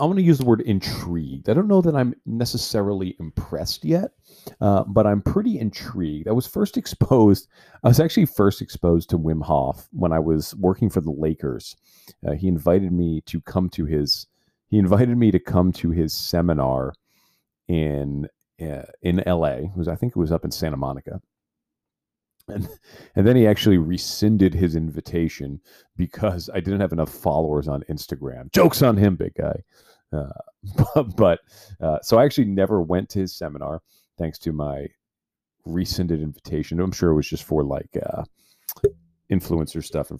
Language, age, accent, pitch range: English, 40-59, American, 80-110 Hz